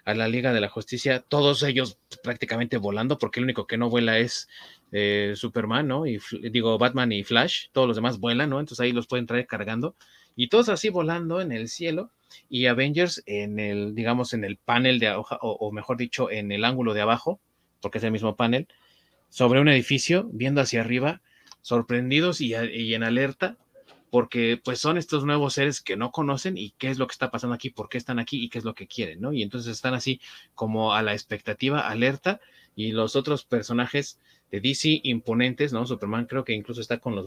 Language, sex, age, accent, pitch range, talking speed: Spanish, male, 30-49, Mexican, 115-155 Hz, 210 wpm